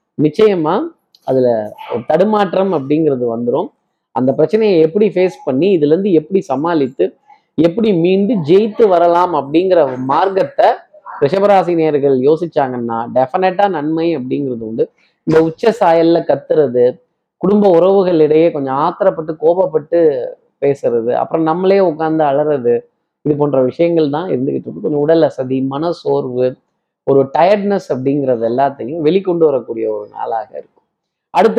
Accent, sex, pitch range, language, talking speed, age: native, male, 140-190 Hz, Tamil, 110 wpm, 20-39